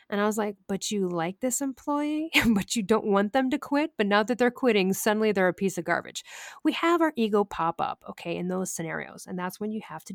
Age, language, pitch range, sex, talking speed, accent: 40-59, English, 180-235 Hz, female, 255 wpm, American